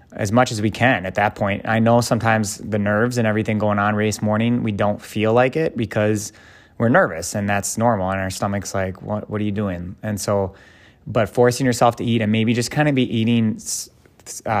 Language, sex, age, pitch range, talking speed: English, male, 20-39, 100-115 Hz, 220 wpm